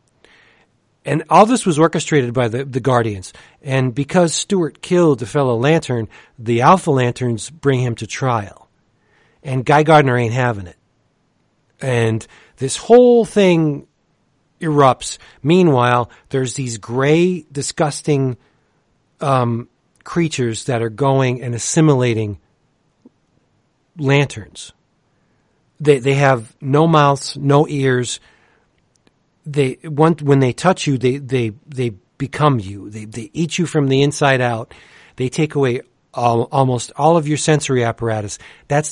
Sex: male